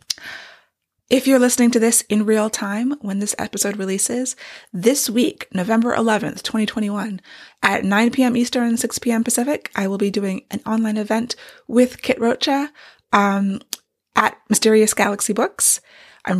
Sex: female